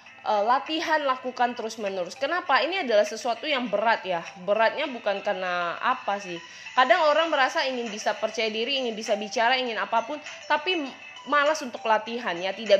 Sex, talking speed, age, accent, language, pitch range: female, 155 wpm, 20-39, native, Indonesian, 200-250 Hz